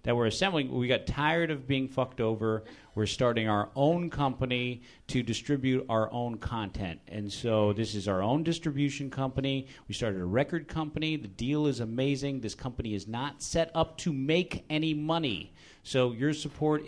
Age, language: 40-59, English